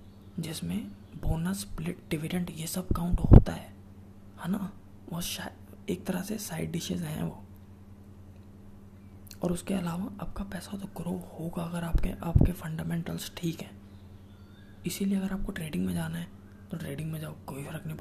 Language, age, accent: Hindi, 20-39, native